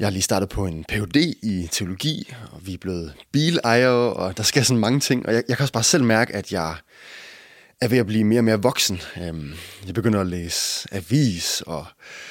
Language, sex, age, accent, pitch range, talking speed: English, male, 20-39, Danish, 100-130 Hz, 220 wpm